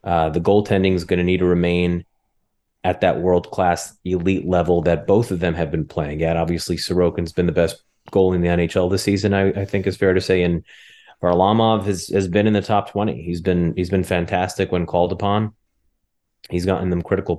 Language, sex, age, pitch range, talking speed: English, male, 30-49, 90-100 Hz, 210 wpm